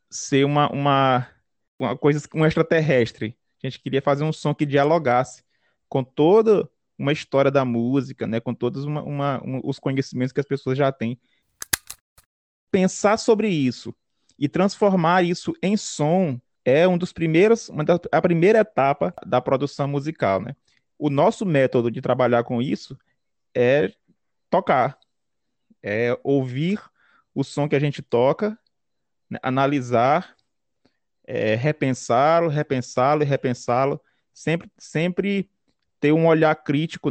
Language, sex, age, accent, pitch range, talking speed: Portuguese, male, 20-39, Brazilian, 125-155 Hz, 135 wpm